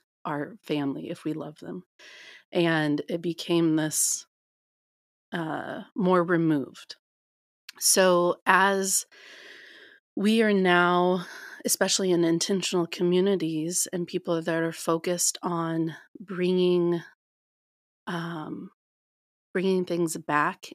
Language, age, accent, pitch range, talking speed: English, 30-49, American, 160-190 Hz, 95 wpm